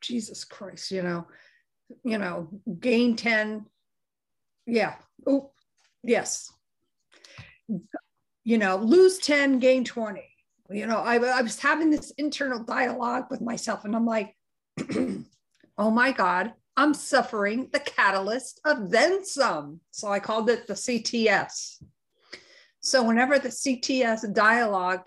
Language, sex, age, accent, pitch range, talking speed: English, female, 50-69, American, 195-250 Hz, 125 wpm